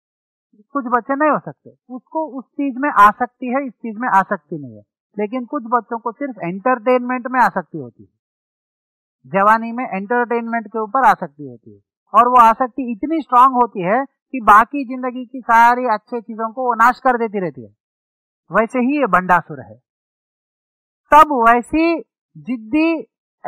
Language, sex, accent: English, male, Indian